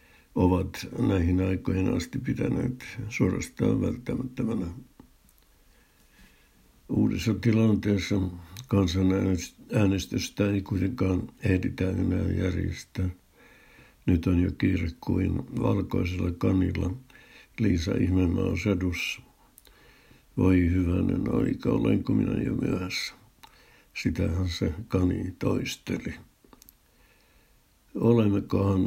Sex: male